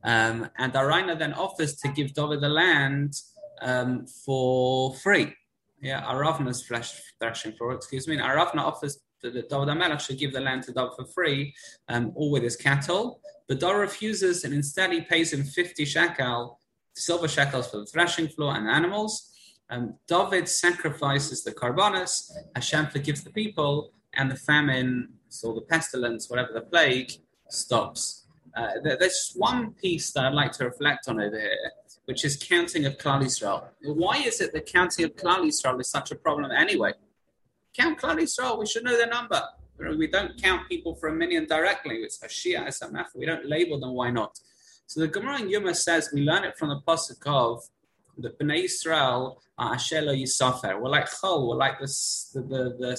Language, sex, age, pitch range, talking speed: English, male, 20-39, 130-175 Hz, 180 wpm